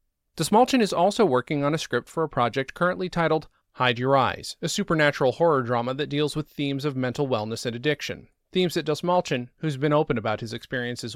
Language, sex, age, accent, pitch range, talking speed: English, male, 30-49, American, 120-155 Hz, 200 wpm